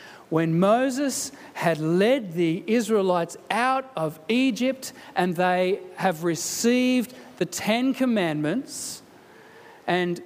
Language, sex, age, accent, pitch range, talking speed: English, male, 40-59, Australian, 175-230 Hz, 100 wpm